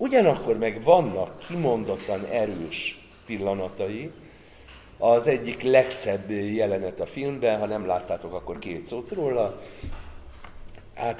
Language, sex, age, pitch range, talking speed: Hungarian, male, 50-69, 95-135 Hz, 105 wpm